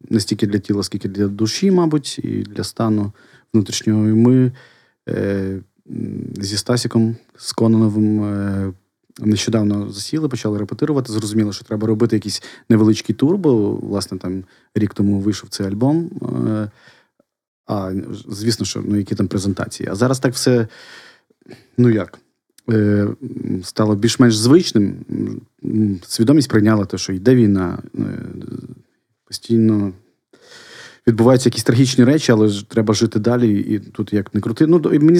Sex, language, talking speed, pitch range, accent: male, Ukrainian, 135 wpm, 105-120 Hz, native